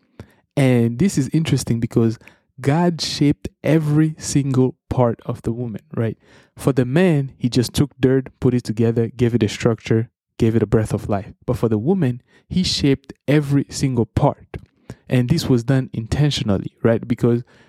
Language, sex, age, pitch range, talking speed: English, male, 20-39, 115-140 Hz, 170 wpm